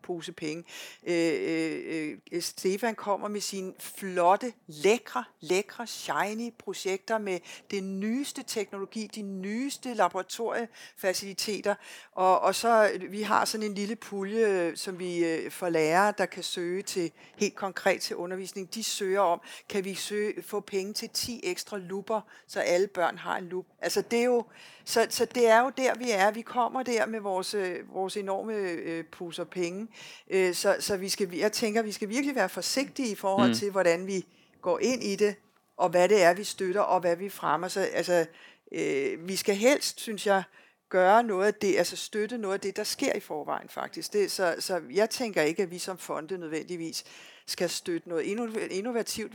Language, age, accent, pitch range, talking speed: Danish, 60-79, native, 180-220 Hz, 180 wpm